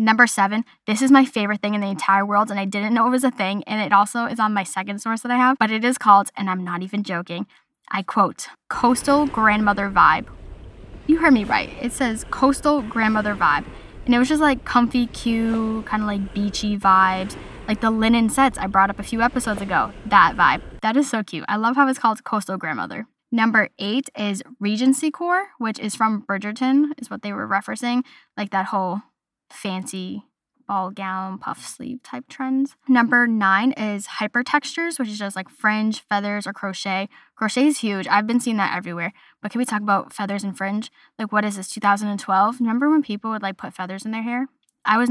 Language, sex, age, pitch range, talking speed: English, female, 10-29, 200-245 Hz, 210 wpm